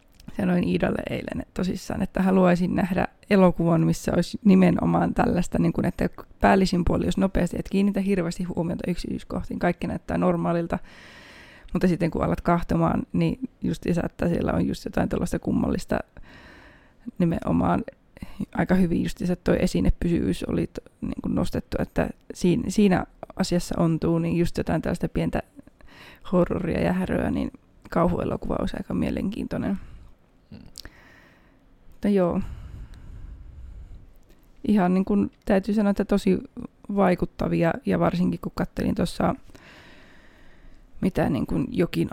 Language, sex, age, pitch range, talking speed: Finnish, female, 20-39, 170-195 Hz, 125 wpm